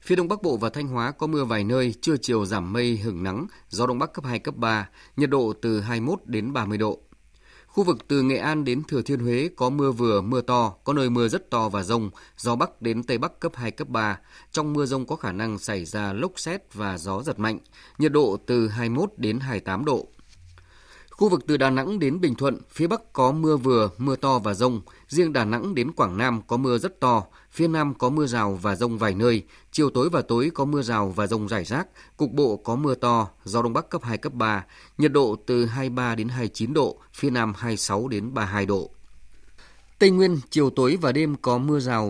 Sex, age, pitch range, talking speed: male, 20-39, 110-140 Hz, 230 wpm